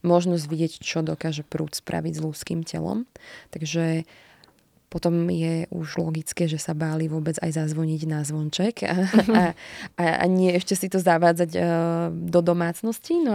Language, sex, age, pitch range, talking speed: Slovak, female, 20-39, 160-185 Hz, 155 wpm